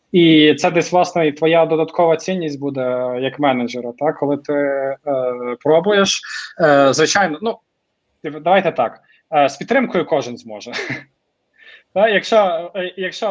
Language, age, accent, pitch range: Ukrainian, 20-39, native, 140-180 Hz